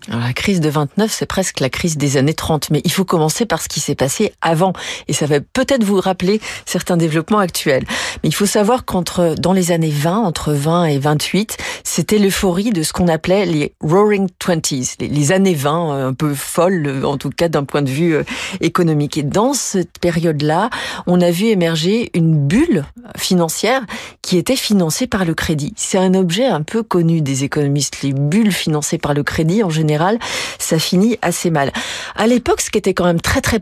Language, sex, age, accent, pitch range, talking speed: French, female, 40-59, French, 155-195 Hz, 205 wpm